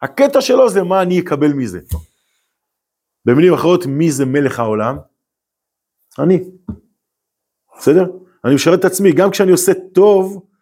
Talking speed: 130 wpm